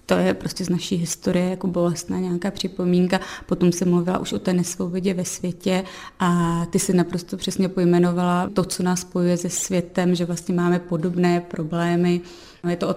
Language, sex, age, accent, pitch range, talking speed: Czech, female, 30-49, native, 175-185 Hz, 180 wpm